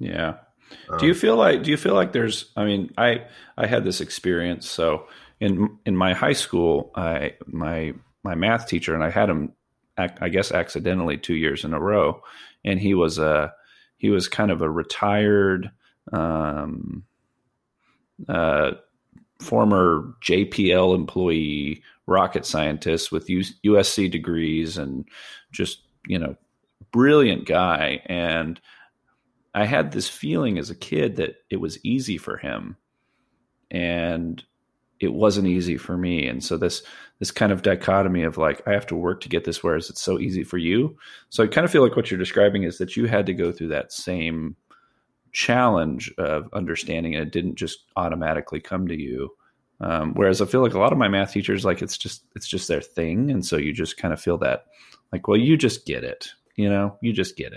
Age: 40-59